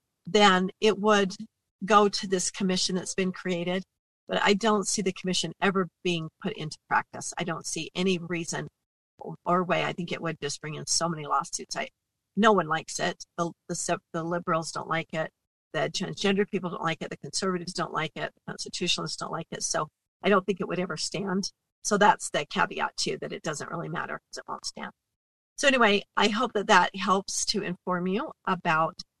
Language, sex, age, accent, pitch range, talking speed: English, female, 40-59, American, 175-205 Hz, 205 wpm